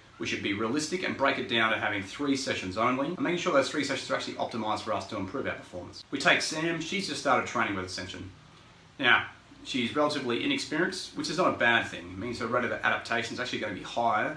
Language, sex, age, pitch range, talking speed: English, male, 30-49, 100-130 Hz, 245 wpm